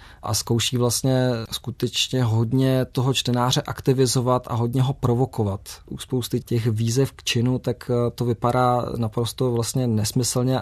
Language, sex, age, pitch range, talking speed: Czech, male, 20-39, 110-120 Hz, 135 wpm